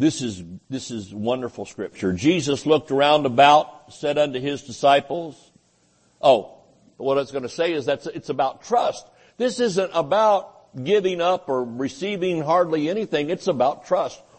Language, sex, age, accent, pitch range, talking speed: English, male, 60-79, American, 140-190 Hz, 155 wpm